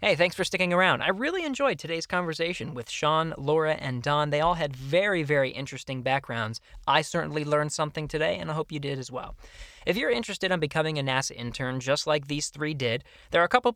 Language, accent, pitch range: English, American, 140-175 Hz